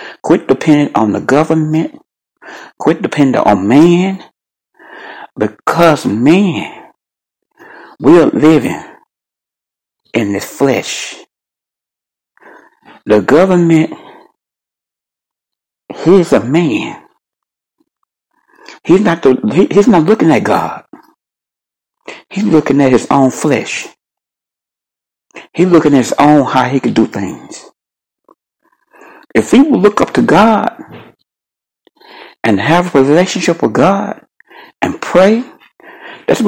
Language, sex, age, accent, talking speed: English, male, 60-79, American, 100 wpm